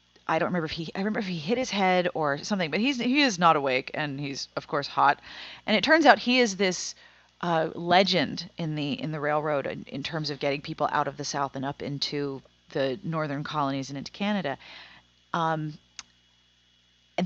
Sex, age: female, 30-49